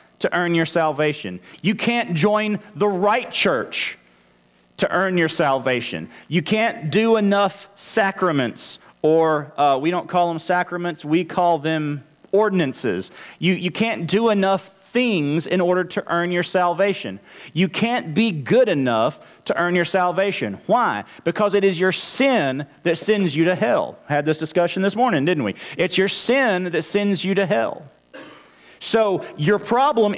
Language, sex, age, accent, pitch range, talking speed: English, male, 40-59, American, 165-215 Hz, 160 wpm